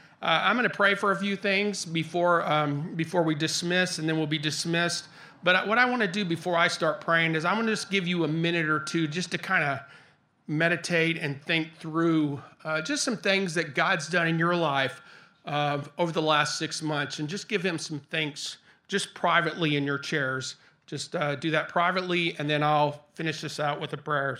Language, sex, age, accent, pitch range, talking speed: English, male, 40-59, American, 140-165 Hz, 220 wpm